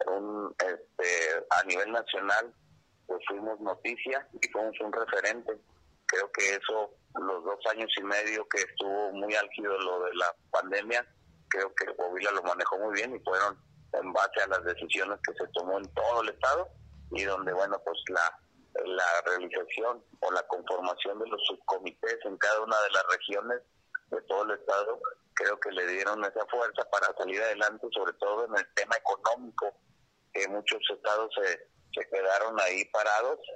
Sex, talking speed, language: male, 165 wpm, Spanish